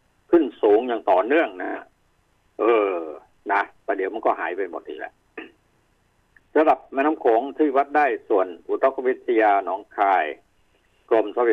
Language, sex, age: Thai, male, 60-79